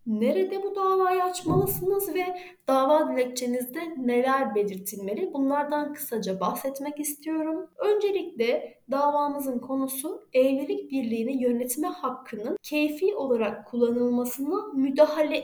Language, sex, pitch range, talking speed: Turkish, female, 240-315 Hz, 95 wpm